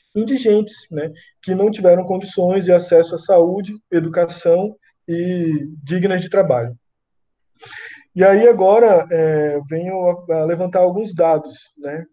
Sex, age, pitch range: male, 20-39, 155-195 Hz